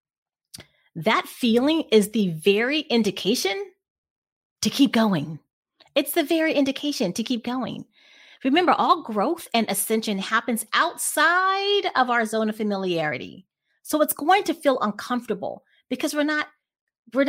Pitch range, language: 205-295 Hz, English